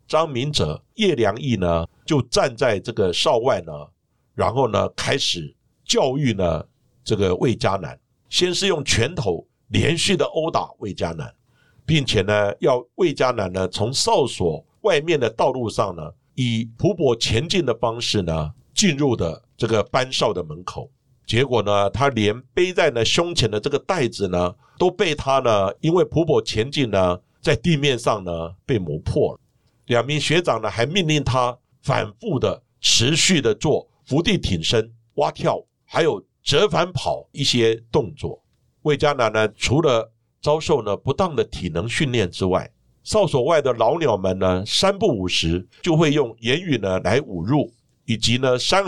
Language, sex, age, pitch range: Chinese, male, 60-79, 105-150 Hz